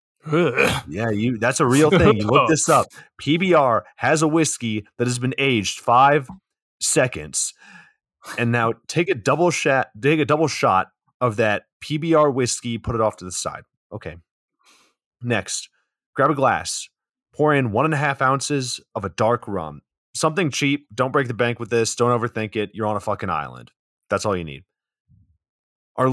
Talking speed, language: 185 wpm, English